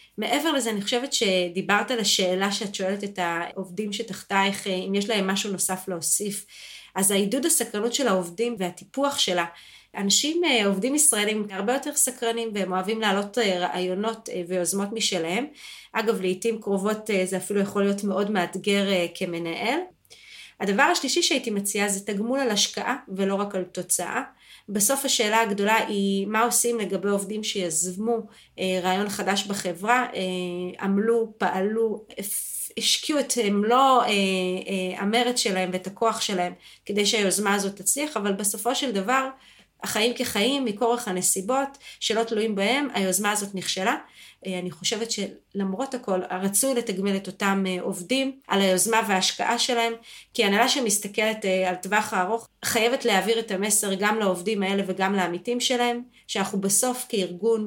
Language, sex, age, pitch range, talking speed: Hebrew, female, 30-49, 190-230 Hz, 140 wpm